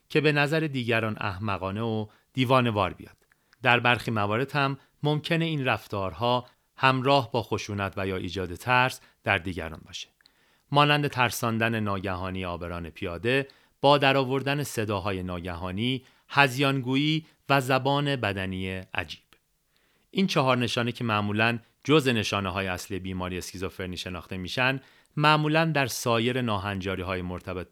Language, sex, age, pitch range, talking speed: Persian, male, 40-59, 95-135 Hz, 125 wpm